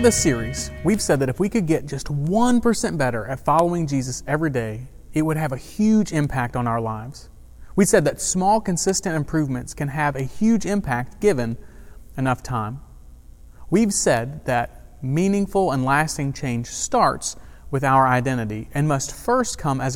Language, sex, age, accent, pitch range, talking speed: English, male, 30-49, American, 120-165 Hz, 170 wpm